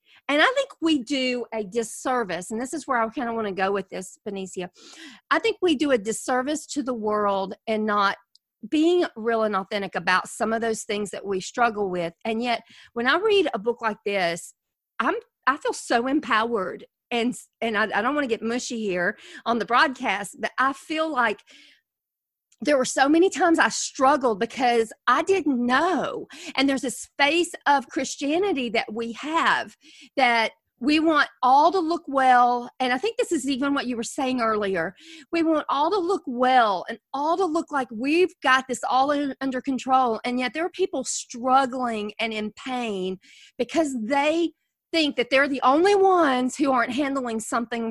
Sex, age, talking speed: female, 40-59, 190 wpm